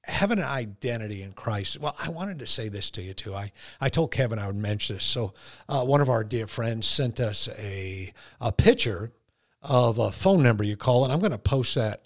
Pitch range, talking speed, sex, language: 105-135 Hz, 230 wpm, male, English